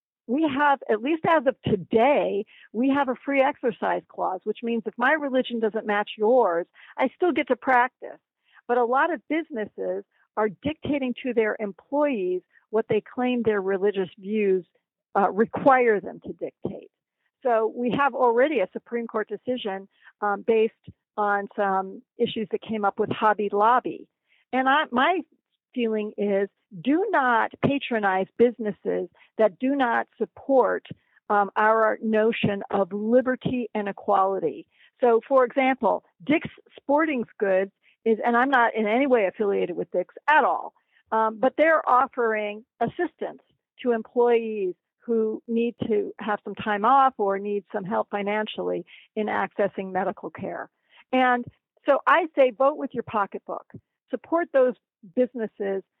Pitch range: 205-260 Hz